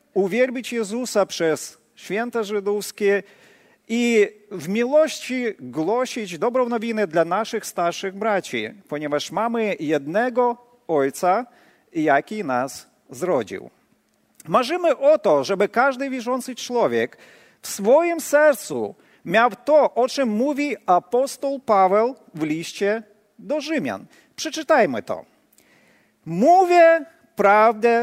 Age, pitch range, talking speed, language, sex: 40-59, 185-275 Hz, 100 wpm, Polish, male